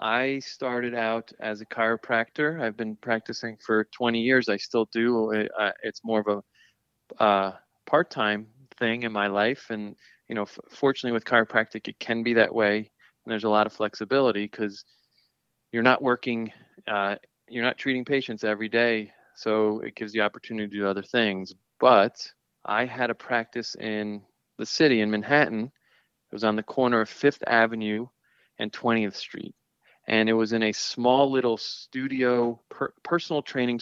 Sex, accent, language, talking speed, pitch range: male, American, English, 165 wpm, 110-125 Hz